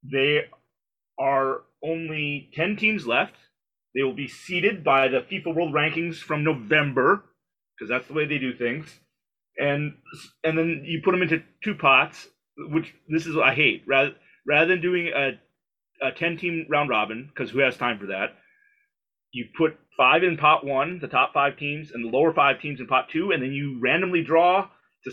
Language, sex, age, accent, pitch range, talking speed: English, male, 30-49, American, 135-170 Hz, 185 wpm